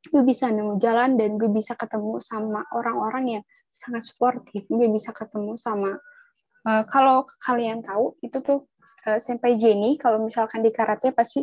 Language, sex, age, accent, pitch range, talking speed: Indonesian, female, 10-29, native, 215-260 Hz, 165 wpm